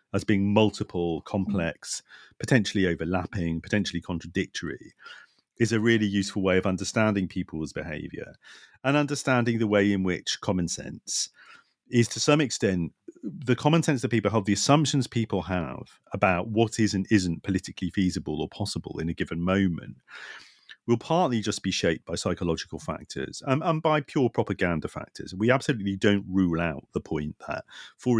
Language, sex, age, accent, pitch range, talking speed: English, male, 40-59, British, 90-125 Hz, 160 wpm